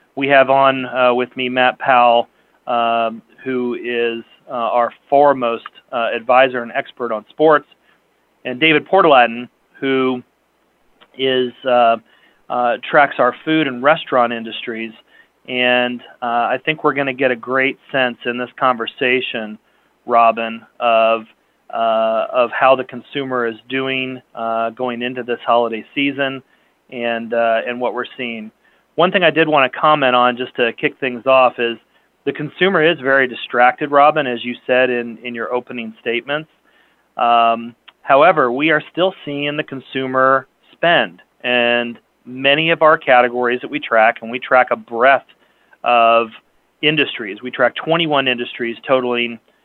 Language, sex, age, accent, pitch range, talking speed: English, male, 30-49, American, 115-135 Hz, 150 wpm